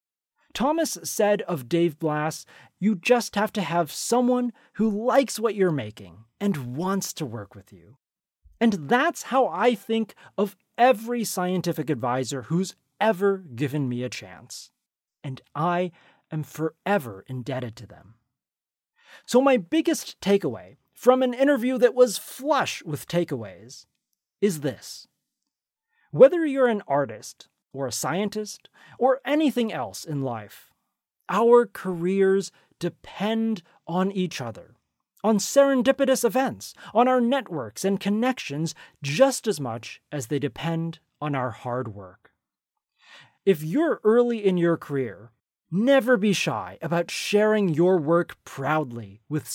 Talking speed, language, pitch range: 130 wpm, English, 145-235 Hz